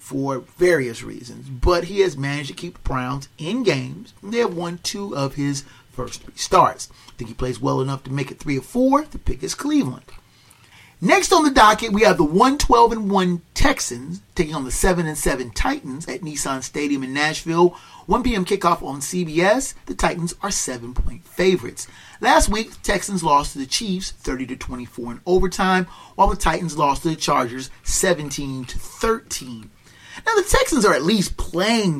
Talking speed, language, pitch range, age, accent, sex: 175 wpm, English, 130-200 Hz, 40-59, American, male